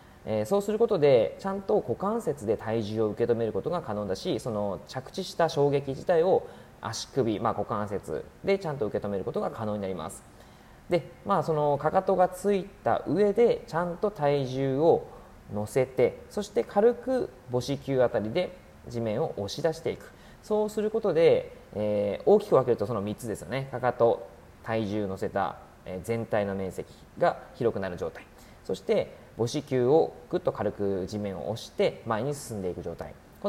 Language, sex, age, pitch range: Japanese, male, 20-39, 105-180 Hz